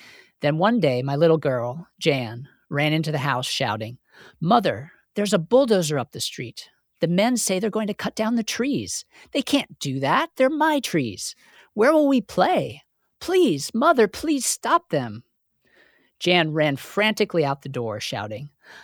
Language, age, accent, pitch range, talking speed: English, 50-69, American, 135-180 Hz, 165 wpm